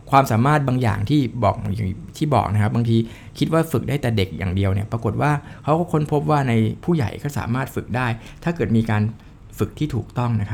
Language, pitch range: Thai, 105-135 Hz